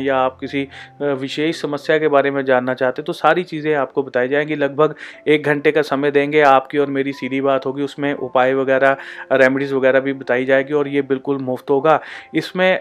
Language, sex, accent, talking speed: Hindi, male, native, 190 wpm